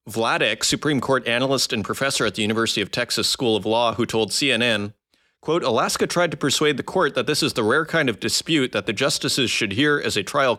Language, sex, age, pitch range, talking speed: English, male, 30-49, 110-135 Hz, 225 wpm